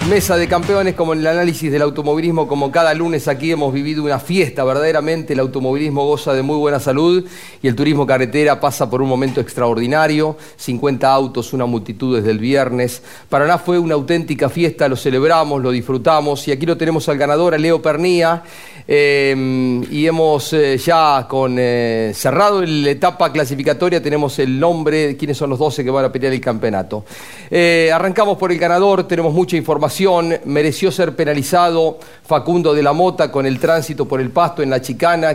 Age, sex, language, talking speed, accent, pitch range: 40-59, male, Spanish, 185 wpm, Argentinian, 135-170 Hz